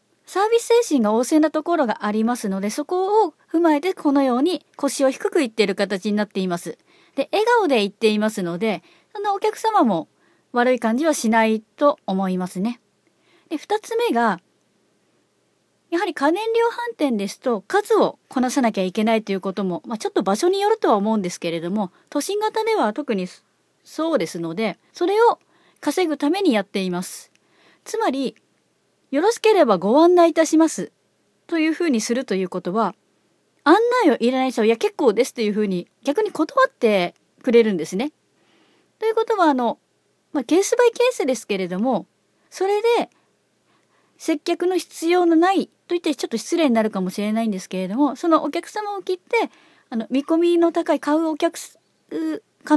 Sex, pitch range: female, 220-360 Hz